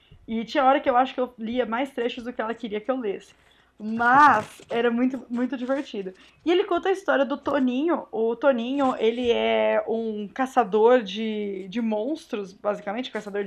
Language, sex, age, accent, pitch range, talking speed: Portuguese, female, 20-39, Brazilian, 220-280 Hz, 185 wpm